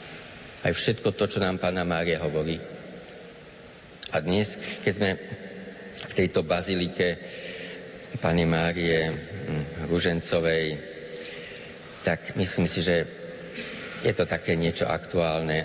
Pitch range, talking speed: 80-95 Hz, 105 wpm